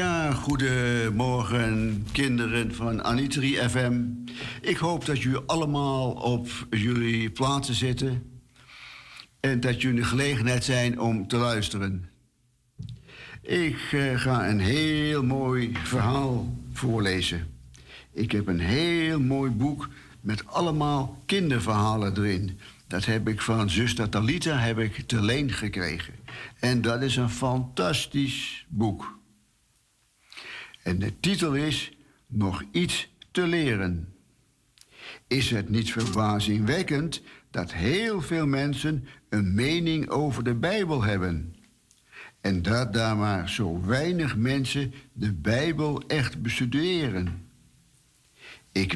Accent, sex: Dutch, male